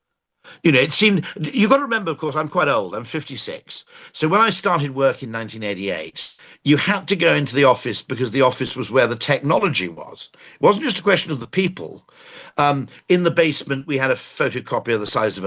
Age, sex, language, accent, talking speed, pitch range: 60-79, male, English, British, 220 wpm, 125-175 Hz